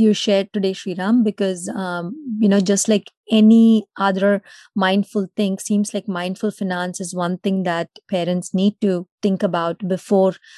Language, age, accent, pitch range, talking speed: Tamil, 30-49, native, 190-225 Hz, 160 wpm